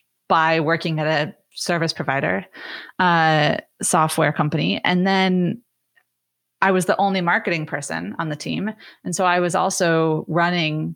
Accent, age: American, 30-49